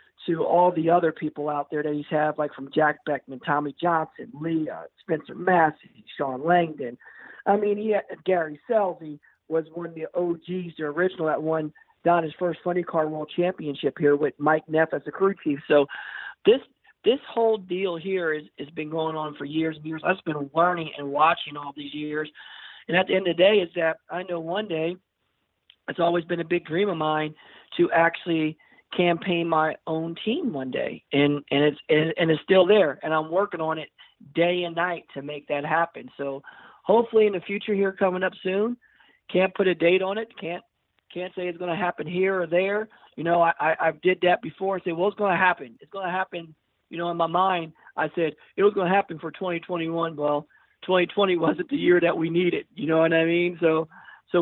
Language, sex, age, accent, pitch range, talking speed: English, male, 50-69, American, 155-185 Hz, 220 wpm